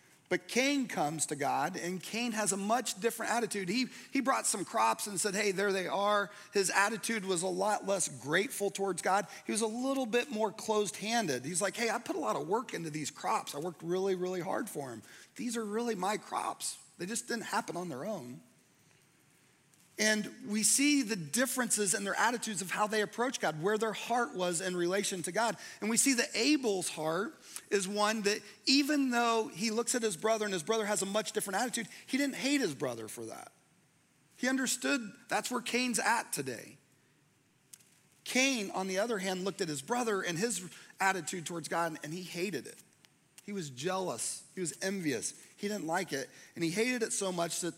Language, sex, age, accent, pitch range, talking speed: English, male, 40-59, American, 185-230 Hz, 205 wpm